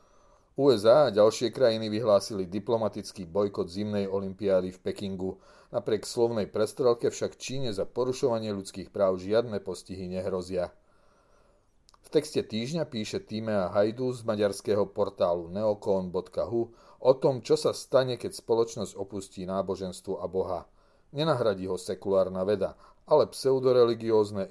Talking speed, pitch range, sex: 120 wpm, 95-115 Hz, male